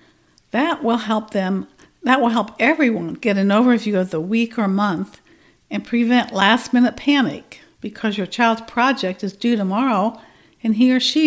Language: English